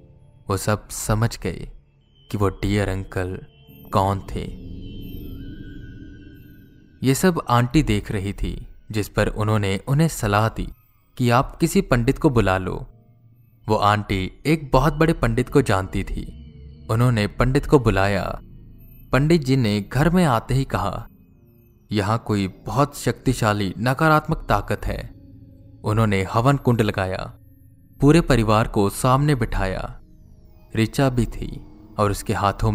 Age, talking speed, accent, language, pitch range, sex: 20-39, 130 wpm, native, Hindi, 100-130 Hz, male